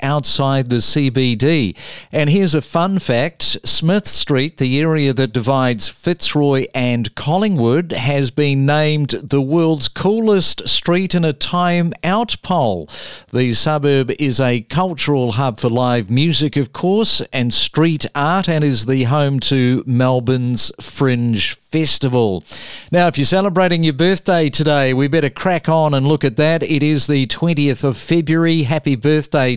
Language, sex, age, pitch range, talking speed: English, male, 50-69, 130-165 Hz, 150 wpm